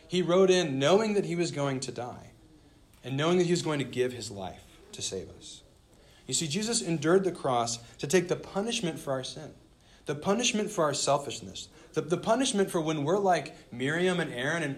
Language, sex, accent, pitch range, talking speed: English, male, American, 125-180 Hz, 210 wpm